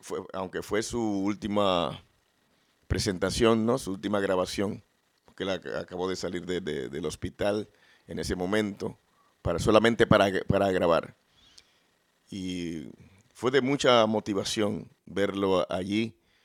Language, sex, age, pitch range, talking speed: Spanish, male, 50-69, 95-110 Hz, 125 wpm